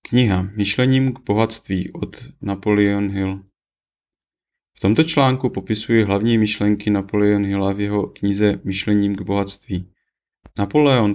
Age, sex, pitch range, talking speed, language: 30-49, male, 100-115 Hz, 125 wpm, Czech